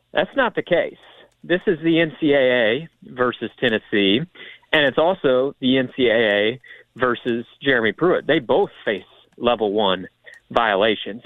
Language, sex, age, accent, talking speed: English, male, 40-59, American, 130 wpm